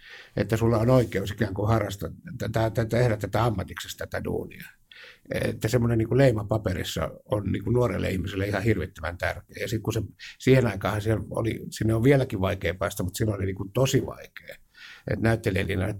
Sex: male